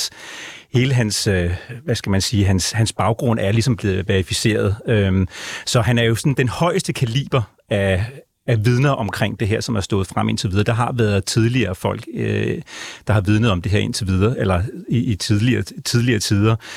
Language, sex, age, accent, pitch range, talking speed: Danish, male, 30-49, native, 105-125 Hz, 190 wpm